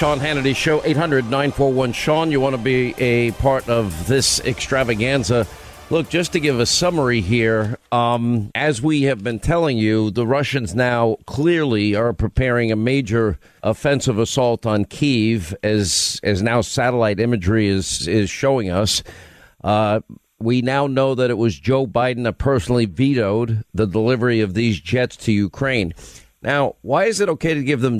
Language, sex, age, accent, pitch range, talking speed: English, male, 50-69, American, 110-140 Hz, 160 wpm